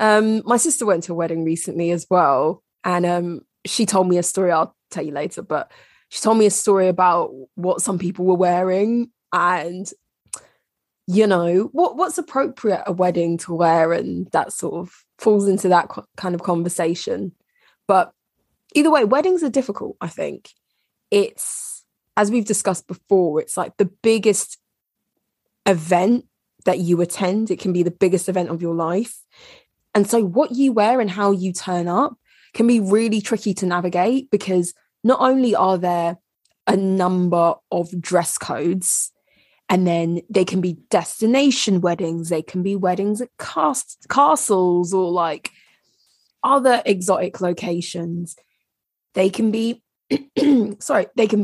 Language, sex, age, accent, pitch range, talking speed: English, female, 20-39, British, 175-225 Hz, 155 wpm